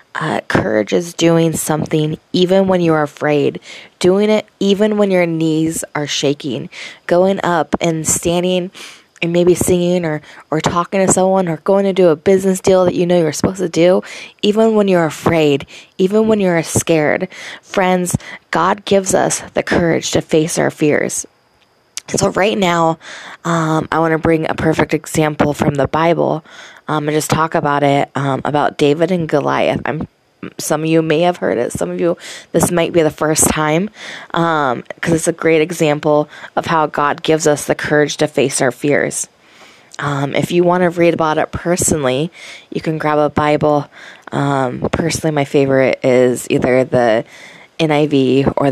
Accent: American